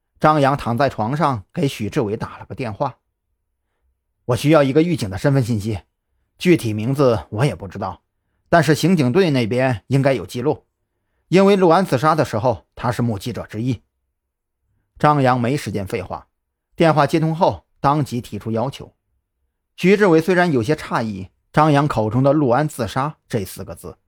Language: Chinese